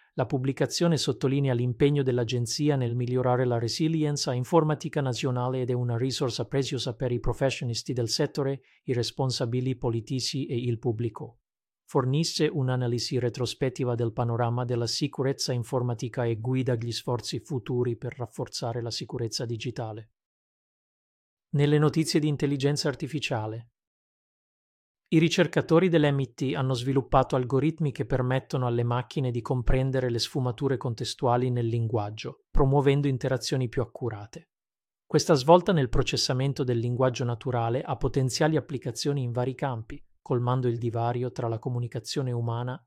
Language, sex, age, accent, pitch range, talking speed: Italian, male, 40-59, native, 120-140 Hz, 130 wpm